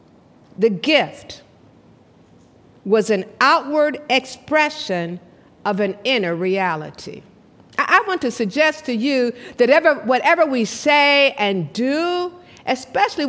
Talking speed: 105 wpm